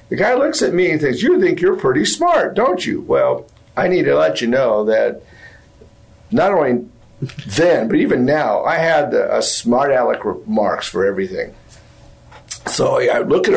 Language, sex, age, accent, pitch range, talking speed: English, male, 50-69, American, 125-210 Hz, 175 wpm